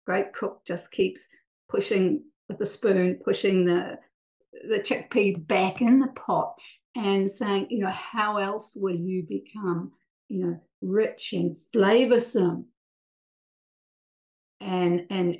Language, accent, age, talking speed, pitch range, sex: English, Australian, 50-69, 125 wpm, 175-215 Hz, female